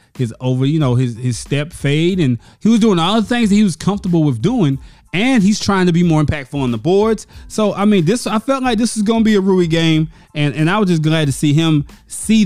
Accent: American